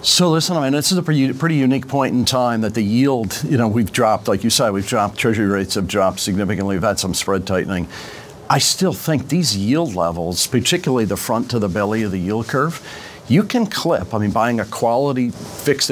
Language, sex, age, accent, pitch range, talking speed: English, male, 50-69, American, 105-125 Hz, 220 wpm